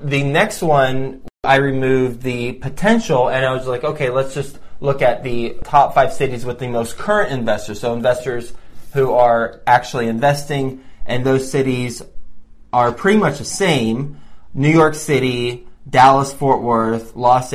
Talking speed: 155 wpm